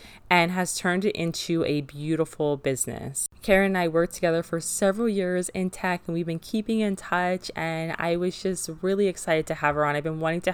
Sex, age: female, 20-39